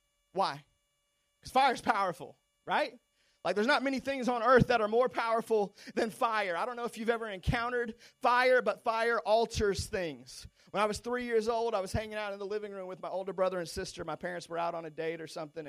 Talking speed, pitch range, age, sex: 230 wpm, 160-205 Hz, 30-49, male